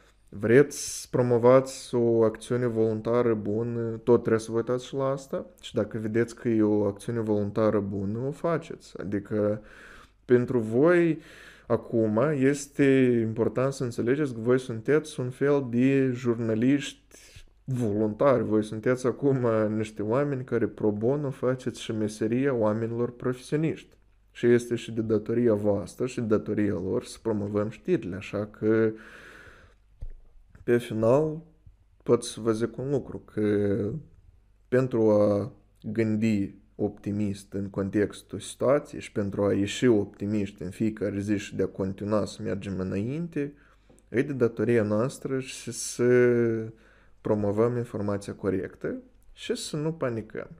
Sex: male